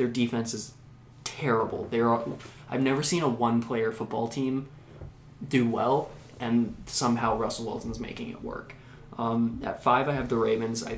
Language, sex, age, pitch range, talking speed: English, male, 20-39, 115-130 Hz, 165 wpm